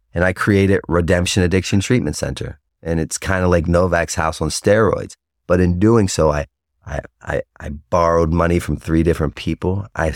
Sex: male